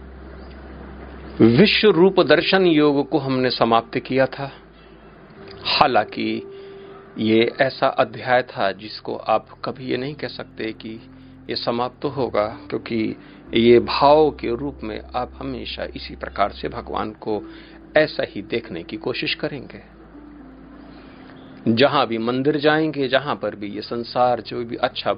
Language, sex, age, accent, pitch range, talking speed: Hindi, male, 50-69, native, 95-140 Hz, 135 wpm